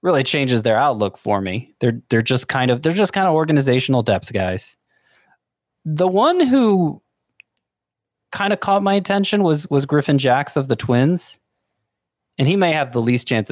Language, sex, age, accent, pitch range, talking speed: English, male, 20-39, American, 110-145 Hz, 180 wpm